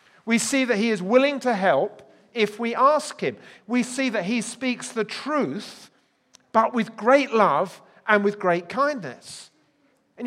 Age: 40-59